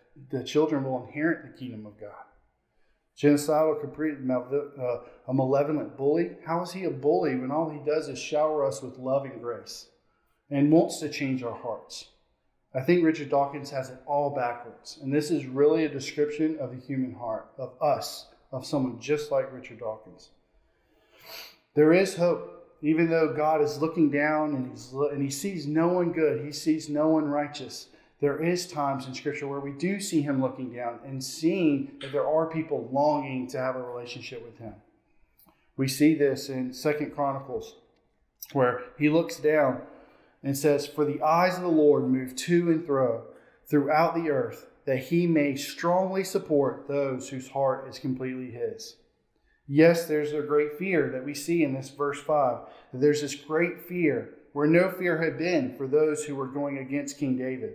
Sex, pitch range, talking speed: male, 135-155 Hz, 180 wpm